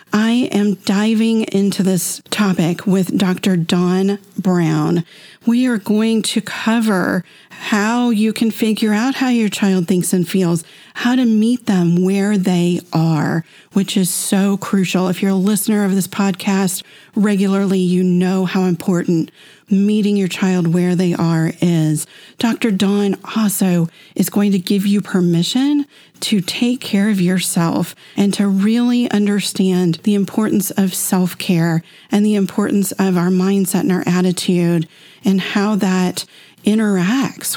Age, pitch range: 40-59, 180-210 Hz